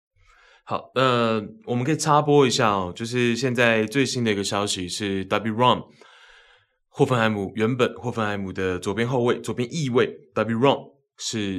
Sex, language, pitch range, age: male, Chinese, 95-115 Hz, 20-39